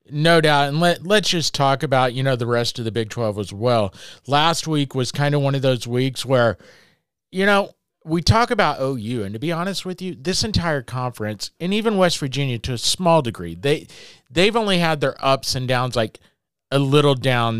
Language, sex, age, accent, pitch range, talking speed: English, male, 40-59, American, 120-165 Hz, 215 wpm